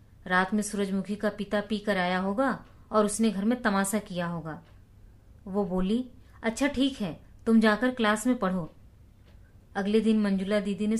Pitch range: 185-230 Hz